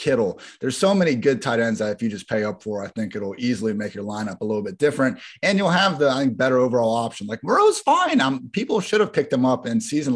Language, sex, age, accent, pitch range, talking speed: English, male, 30-49, American, 115-145 Hz, 270 wpm